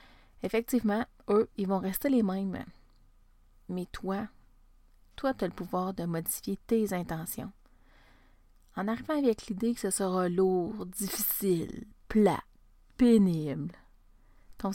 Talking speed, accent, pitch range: 120 wpm, Canadian, 185-230 Hz